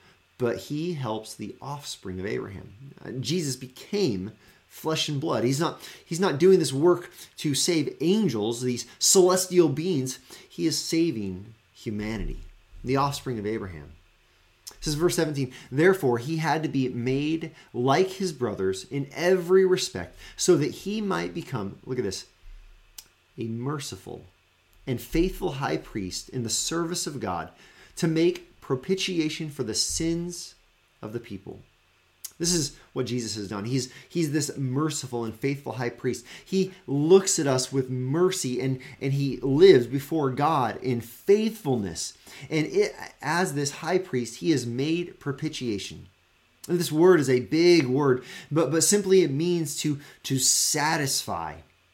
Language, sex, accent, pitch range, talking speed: English, male, American, 120-170 Hz, 150 wpm